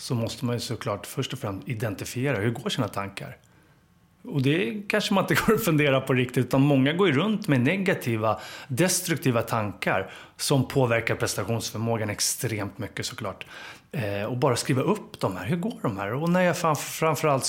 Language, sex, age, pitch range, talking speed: English, male, 30-49, 110-150 Hz, 180 wpm